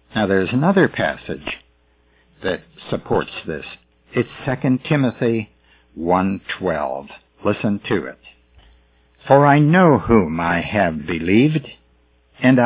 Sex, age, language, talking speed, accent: male, 60-79, English, 105 wpm, American